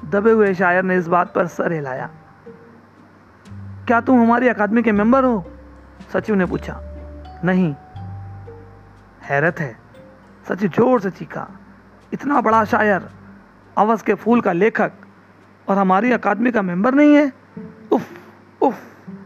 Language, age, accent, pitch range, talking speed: Hindi, 40-59, native, 170-220 Hz, 135 wpm